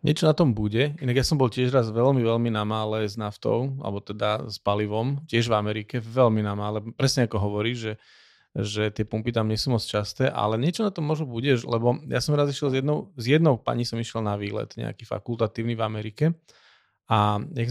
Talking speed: 210 wpm